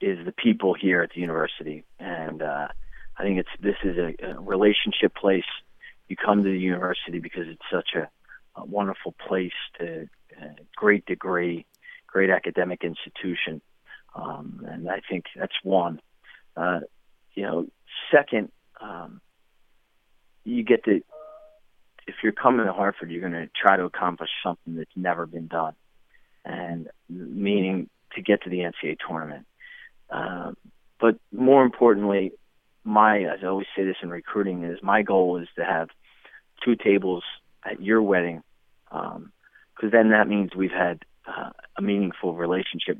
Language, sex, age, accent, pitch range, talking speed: English, male, 40-59, American, 90-115 Hz, 150 wpm